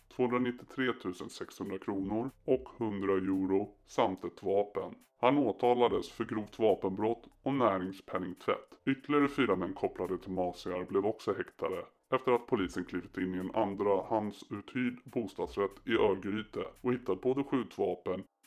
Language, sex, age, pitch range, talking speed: Swedish, female, 30-49, 95-125 Hz, 135 wpm